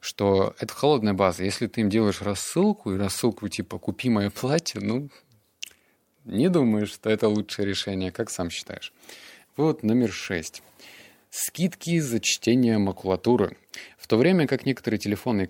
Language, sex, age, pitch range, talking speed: Russian, male, 20-39, 100-130 Hz, 145 wpm